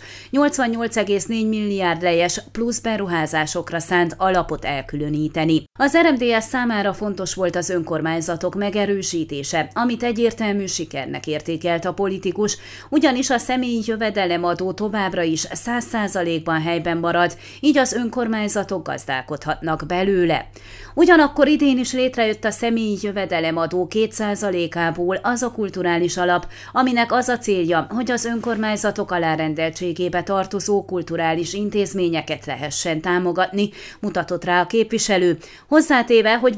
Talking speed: 110 wpm